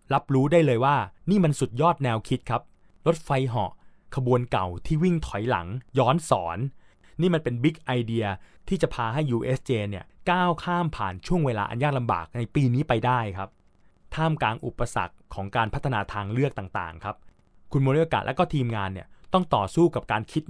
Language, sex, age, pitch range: Thai, male, 20-39, 105-145 Hz